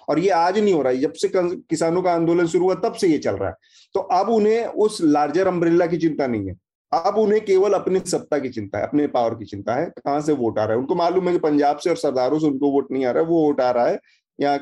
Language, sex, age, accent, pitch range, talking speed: Hindi, male, 30-49, native, 125-170 Hz, 285 wpm